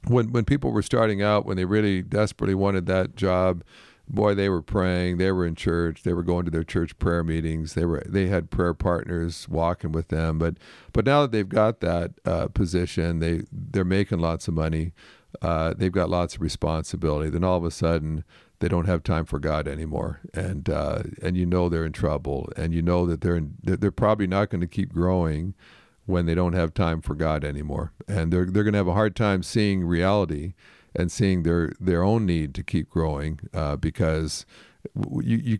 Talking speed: 205 wpm